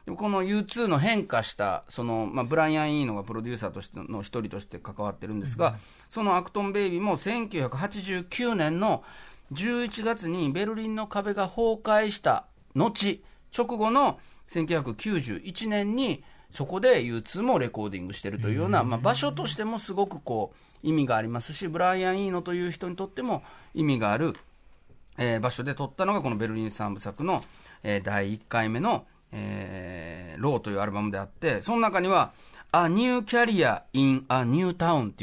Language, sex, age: Japanese, male, 40-59